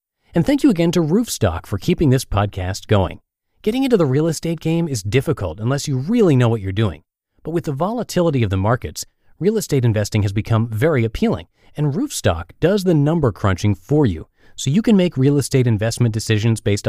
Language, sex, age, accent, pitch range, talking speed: English, male, 30-49, American, 105-155 Hz, 205 wpm